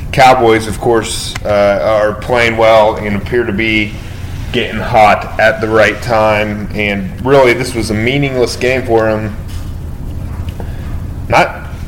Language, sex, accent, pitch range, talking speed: English, male, American, 105-125 Hz, 135 wpm